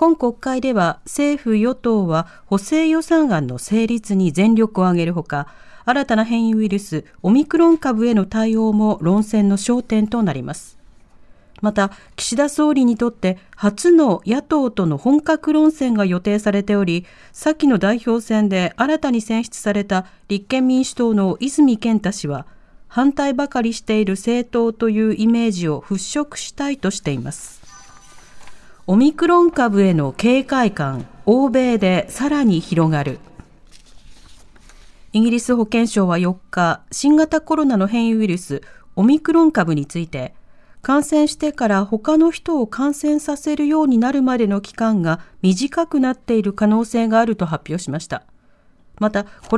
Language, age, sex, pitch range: Japanese, 40-59, female, 190-270 Hz